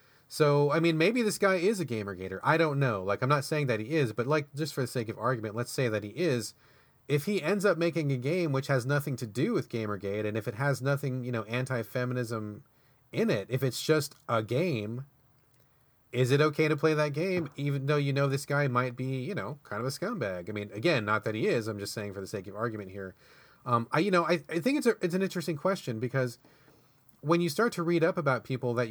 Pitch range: 110-150 Hz